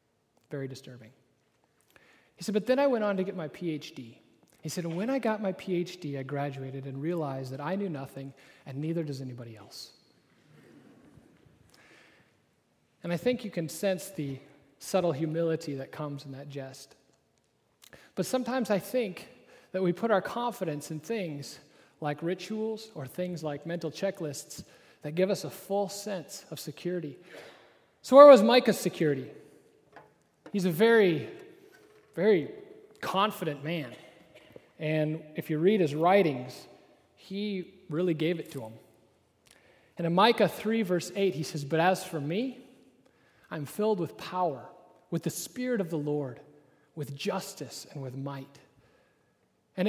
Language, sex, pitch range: English, male, 150-200 Hz